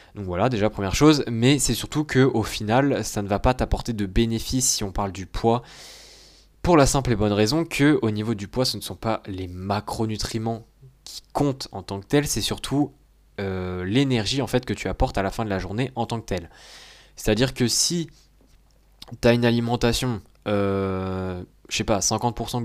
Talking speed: 200 wpm